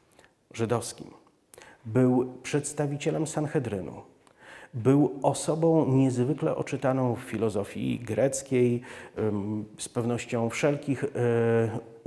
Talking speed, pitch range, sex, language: 75 wpm, 115-150 Hz, male, Polish